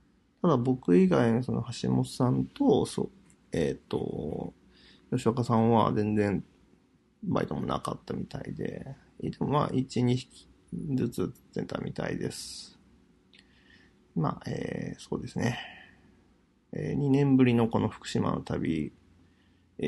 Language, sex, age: Japanese, male, 40-59